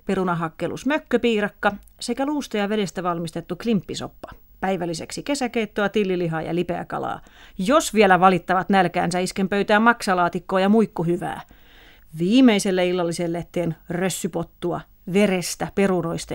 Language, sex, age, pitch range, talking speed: Finnish, female, 30-49, 175-225 Hz, 110 wpm